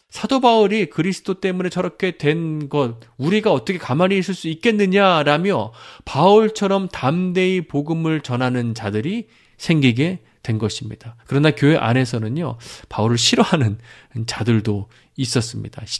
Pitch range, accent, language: 120-180 Hz, native, Korean